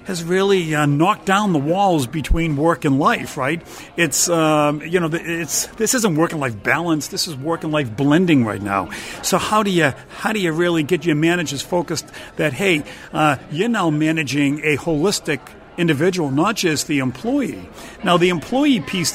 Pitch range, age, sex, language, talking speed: 150-190 Hz, 50-69, male, English, 190 wpm